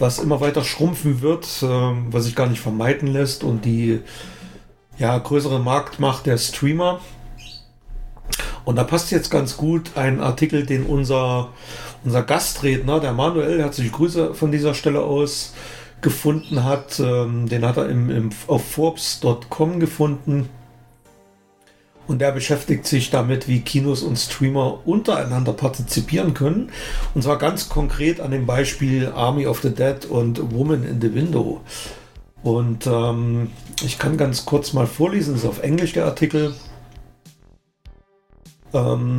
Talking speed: 135 wpm